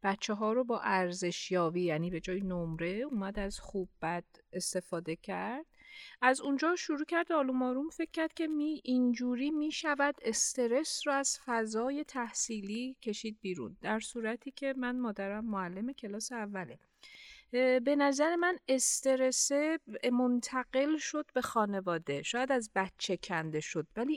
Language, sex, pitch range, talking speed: Persian, female, 200-275 Hz, 140 wpm